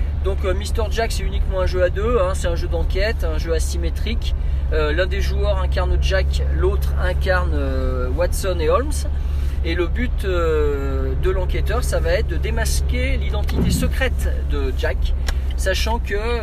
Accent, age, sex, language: French, 40-59, male, French